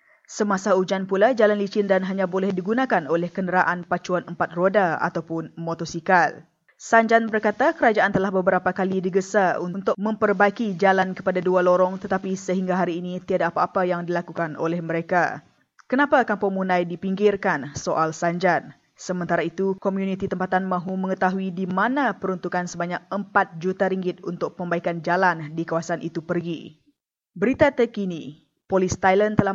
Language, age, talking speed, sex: English, 20-39, 140 wpm, female